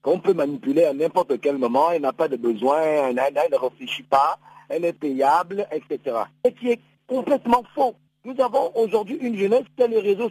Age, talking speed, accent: 50-69, 205 wpm, French